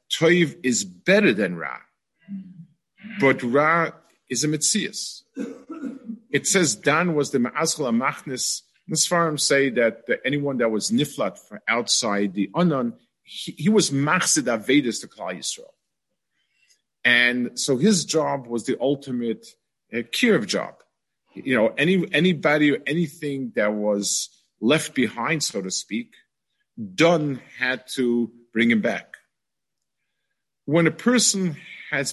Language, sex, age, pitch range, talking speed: English, male, 50-69, 125-185 Hz, 135 wpm